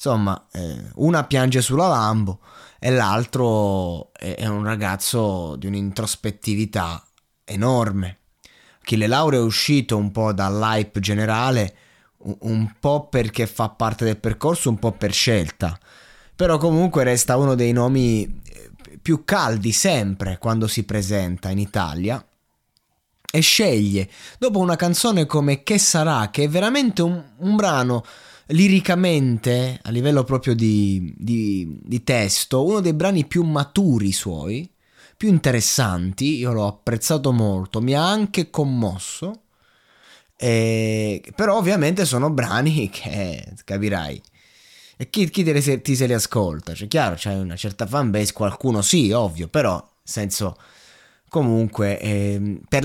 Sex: male